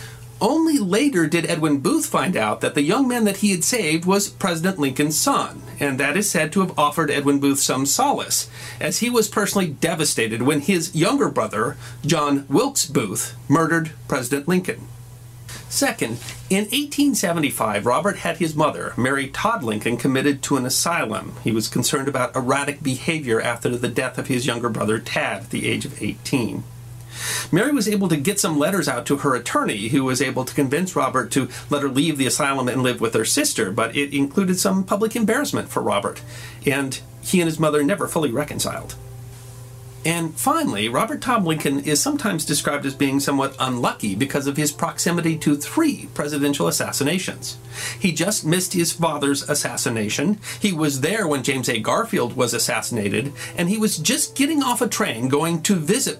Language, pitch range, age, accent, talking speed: English, 125-175 Hz, 40-59, American, 180 wpm